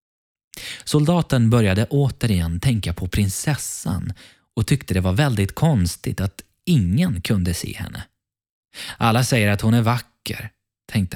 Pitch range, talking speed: 95-125 Hz, 130 wpm